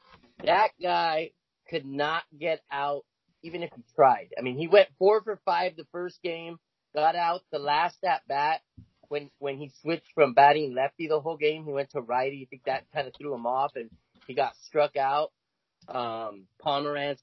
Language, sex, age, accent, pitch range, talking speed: English, male, 30-49, American, 130-165 Hz, 190 wpm